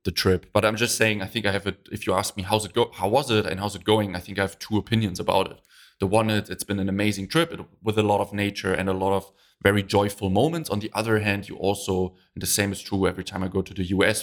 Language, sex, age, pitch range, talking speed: English, male, 20-39, 90-105 Hz, 300 wpm